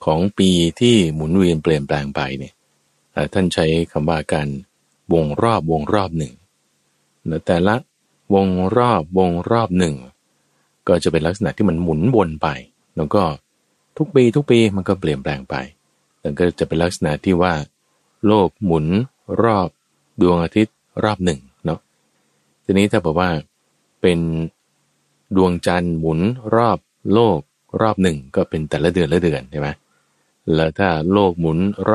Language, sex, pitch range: Thai, male, 75-95 Hz